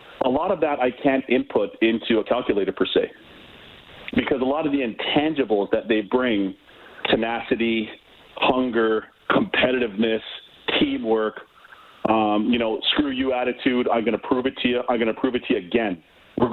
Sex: male